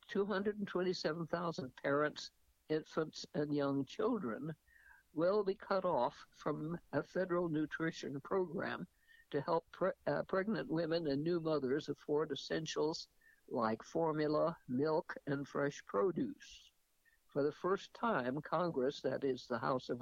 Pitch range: 140-200 Hz